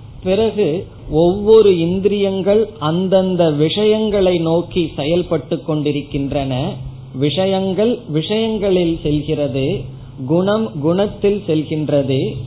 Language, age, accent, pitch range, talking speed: Tamil, 20-39, native, 135-185 Hz, 65 wpm